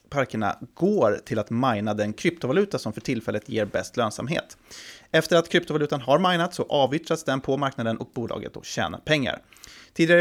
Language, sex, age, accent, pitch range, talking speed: Swedish, male, 30-49, native, 110-140 Hz, 170 wpm